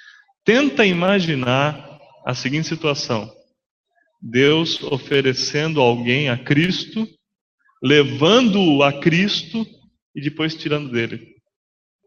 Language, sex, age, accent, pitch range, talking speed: English, male, 20-39, Brazilian, 125-180 Hz, 85 wpm